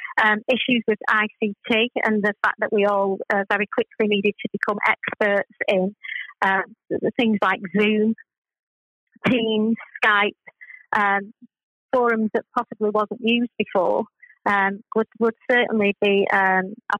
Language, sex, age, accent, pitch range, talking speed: English, female, 30-49, British, 200-235 Hz, 140 wpm